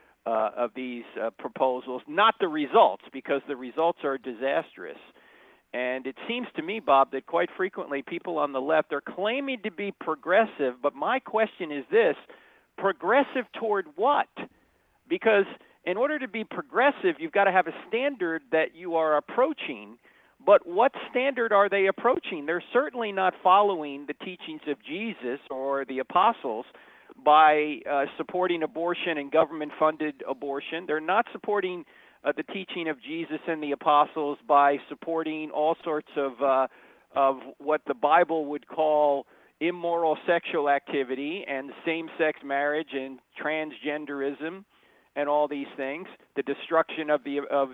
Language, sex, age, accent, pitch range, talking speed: English, male, 50-69, American, 140-195 Hz, 150 wpm